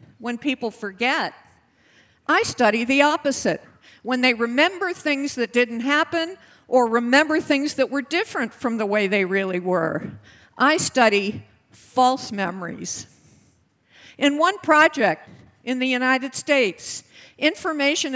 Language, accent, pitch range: English, American, 230-295 Hz